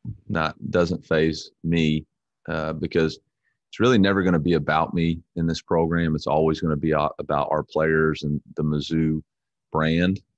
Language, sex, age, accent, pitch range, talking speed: English, male, 30-49, American, 75-85 Hz, 170 wpm